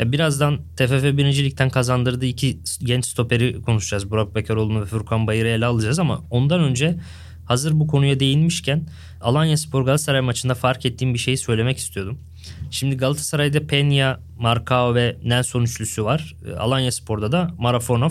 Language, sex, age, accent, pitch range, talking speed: Turkish, male, 20-39, native, 120-150 Hz, 150 wpm